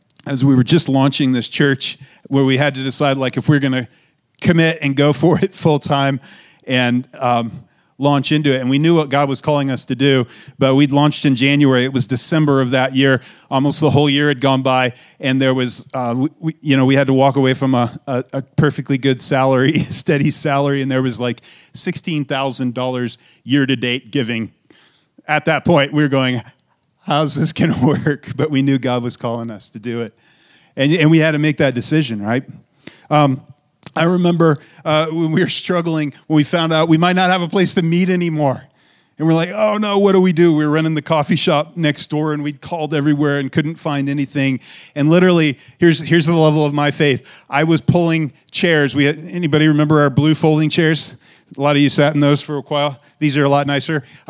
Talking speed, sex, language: 220 wpm, male, English